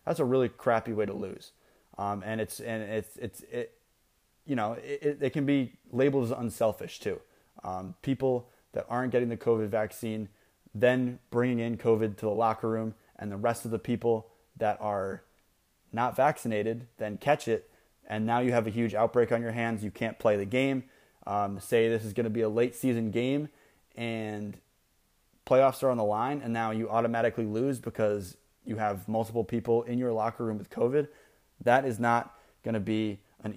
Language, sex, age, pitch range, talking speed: English, male, 20-39, 110-125 Hz, 195 wpm